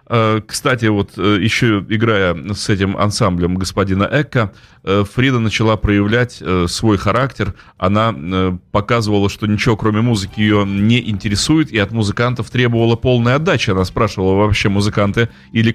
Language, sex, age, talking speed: Russian, male, 30-49, 130 wpm